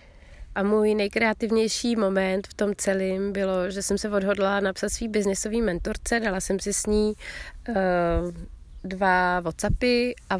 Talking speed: 140 wpm